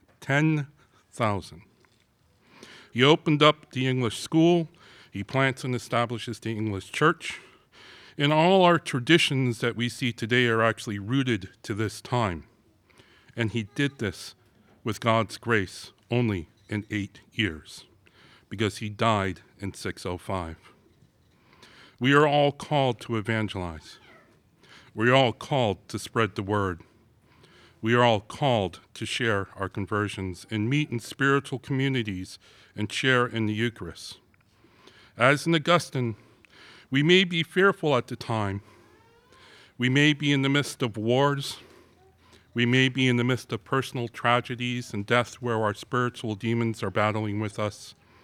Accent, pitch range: American, 105-130 Hz